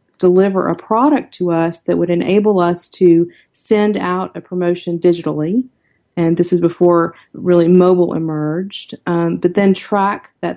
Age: 40-59